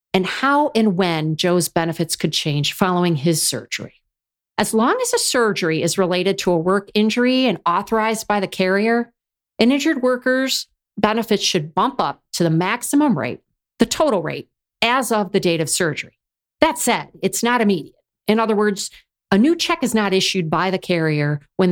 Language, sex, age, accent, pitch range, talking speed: English, female, 50-69, American, 170-235 Hz, 180 wpm